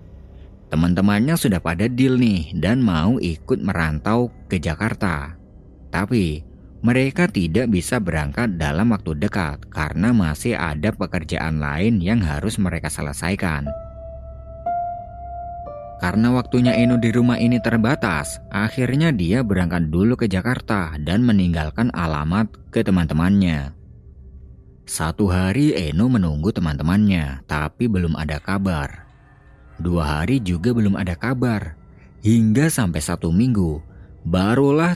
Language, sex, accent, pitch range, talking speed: Indonesian, male, native, 80-115 Hz, 115 wpm